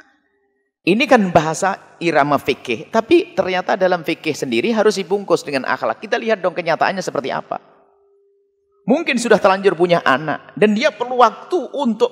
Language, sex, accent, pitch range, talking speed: Indonesian, male, native, 175-255 Hz, 150 wpm